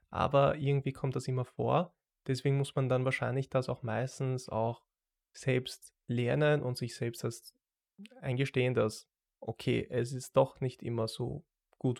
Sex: male